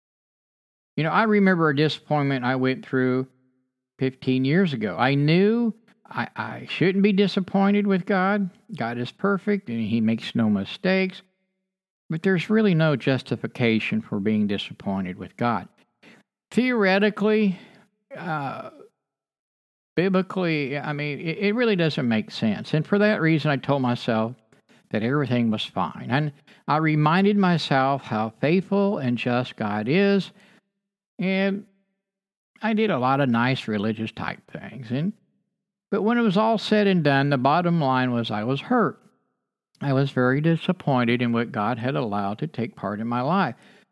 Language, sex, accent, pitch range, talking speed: English, male, American, 125-195 Hz, 155 wpm